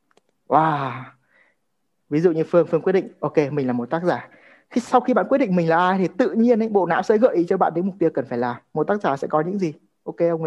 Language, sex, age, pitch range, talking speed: Vietnamese, male, 20-39, 145-195 Hz, 280 wpm